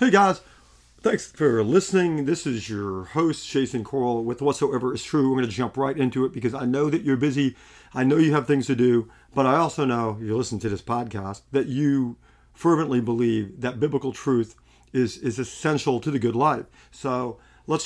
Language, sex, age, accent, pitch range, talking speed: English, male, 40-59, American, 110-140 Hz, 205 wpm